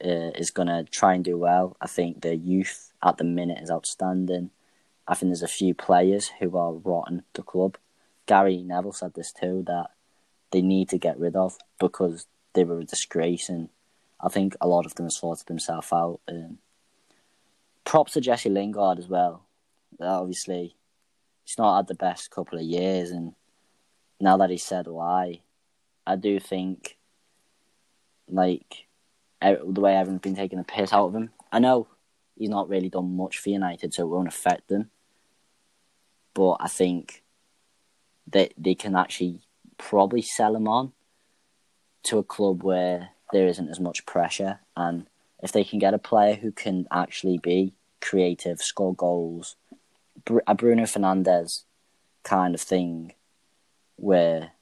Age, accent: 20-39, British